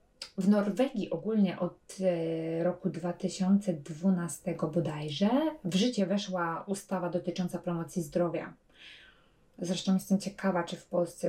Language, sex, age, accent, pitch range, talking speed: English, female, 20-39, Polish, 175-195 Hz, 105 wpm